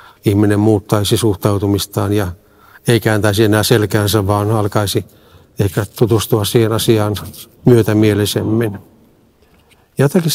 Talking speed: 100 wpm